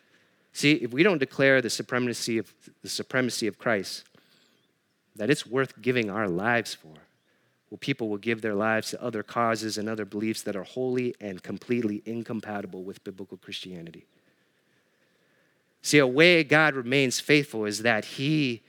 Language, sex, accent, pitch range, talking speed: English, male, American, 115-150 Hz, 155 wpm